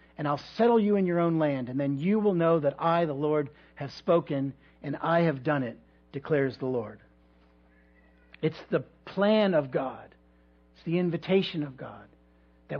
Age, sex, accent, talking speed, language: 50-69, male, American, 180 wpm, English